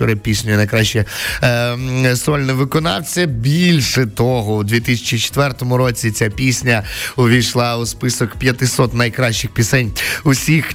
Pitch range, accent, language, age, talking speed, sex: 110-140 Hz, native, Ukrainian, 20-39, 110 wpm, male